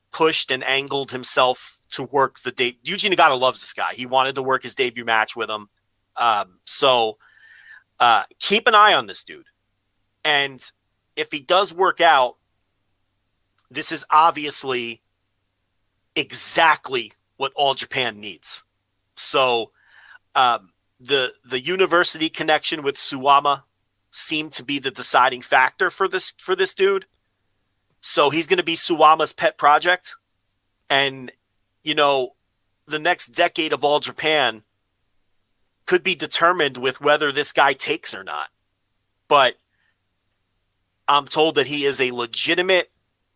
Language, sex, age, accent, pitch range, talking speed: English, male, 30-49, American, 100-155 Hz, 135 wpm